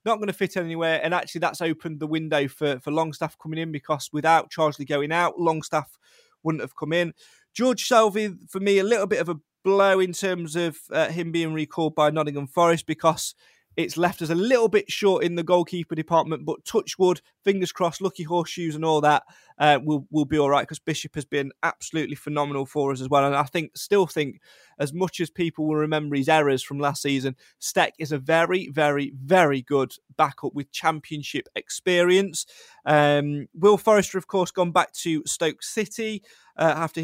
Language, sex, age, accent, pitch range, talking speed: English, male, 20-39, British, 150-185 Hz, 200 wpm